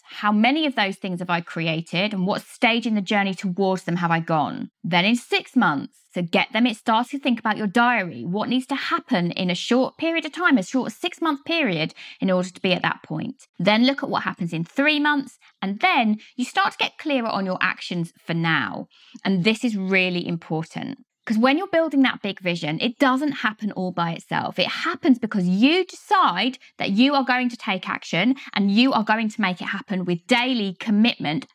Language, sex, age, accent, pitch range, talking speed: English, female, 20-39, British, 185-265 Hz, 220 wpm